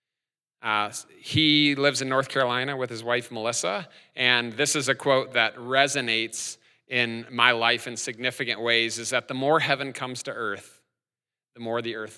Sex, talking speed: male, 170 wpm